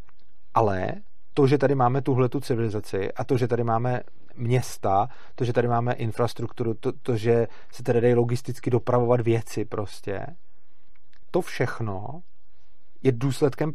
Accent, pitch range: native, 115-145 Hz